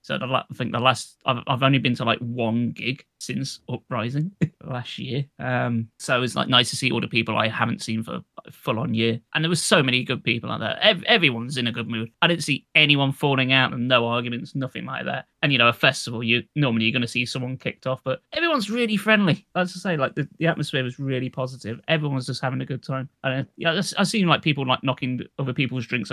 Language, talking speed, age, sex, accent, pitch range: English, 255 wpm, 20-39, male, British, 125-165 Hz